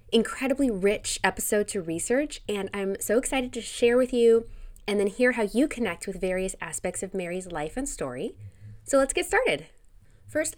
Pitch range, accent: 160-230 Hz, American